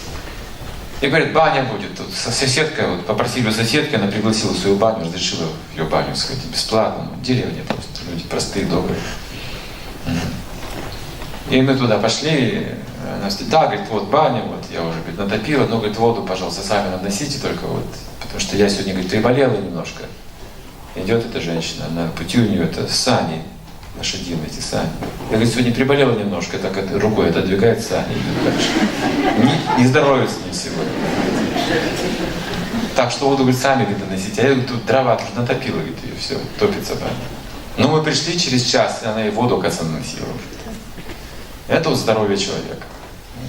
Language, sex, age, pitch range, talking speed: Russian, male, 40-59, 100-130 Hz, 155 wpm